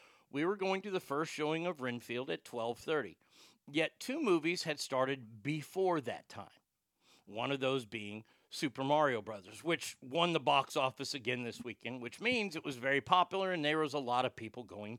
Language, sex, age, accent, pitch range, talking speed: English, male, 50-69, American, 120-150 Hz, 190 wpm